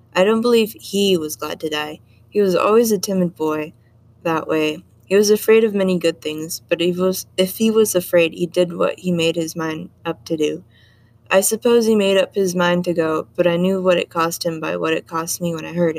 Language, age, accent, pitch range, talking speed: English, 20-39, American, 155-185 Hz, 235 wpm